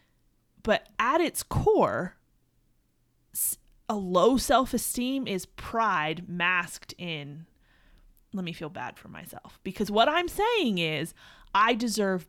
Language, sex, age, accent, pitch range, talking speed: English, female, 30-49, American, 170-215 Hz, 115 wpm